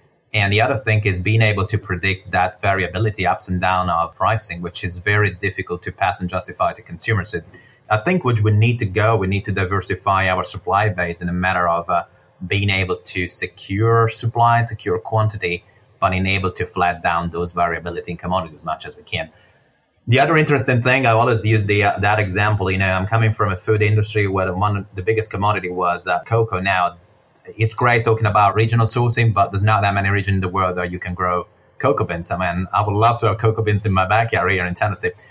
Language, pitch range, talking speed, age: English, 95-110 Hz, 225 wpm, 30-49